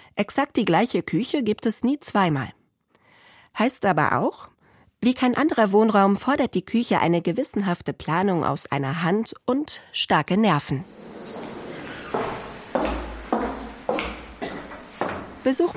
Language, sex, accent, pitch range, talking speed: German, female, German, 150-210 Hz, 105 wpm